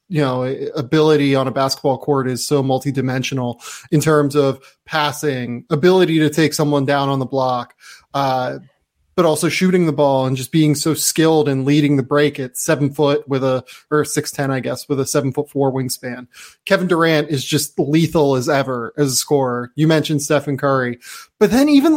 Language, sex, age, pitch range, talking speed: English, male, 20-39, 135-170 Hz, 190 wpm